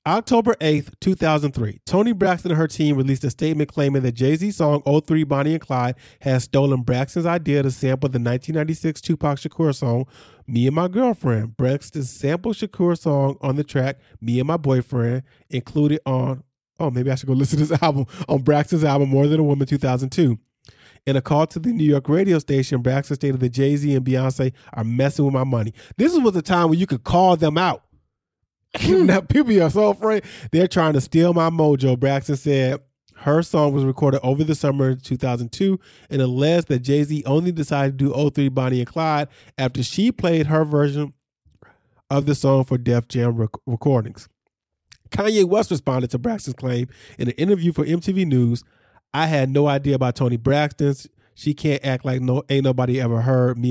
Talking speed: 200 wpm